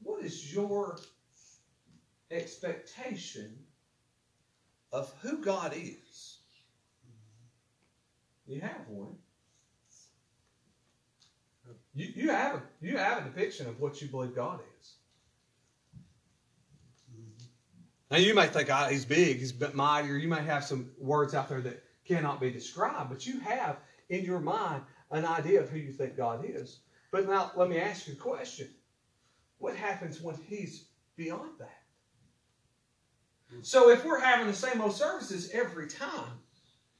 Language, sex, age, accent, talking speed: English, male, 40-59, American, 135 wpm